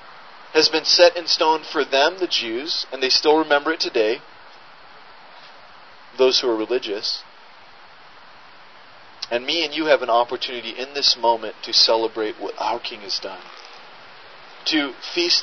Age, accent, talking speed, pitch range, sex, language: 30-49, American, 150 wpm, 120-180 Hz, male, English